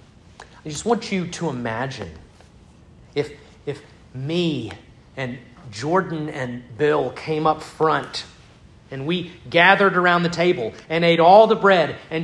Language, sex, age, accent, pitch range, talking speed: English, male, 40-59, American, 120-180 Hz, 135 wpm